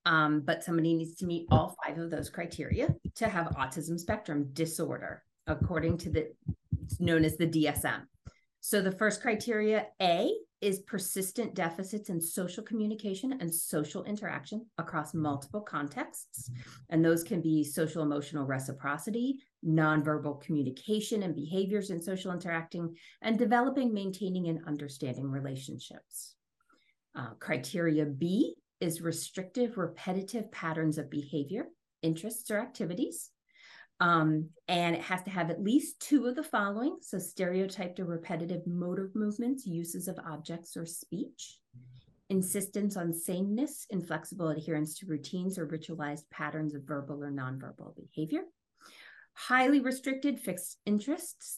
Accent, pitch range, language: American, 155-210 Hz, English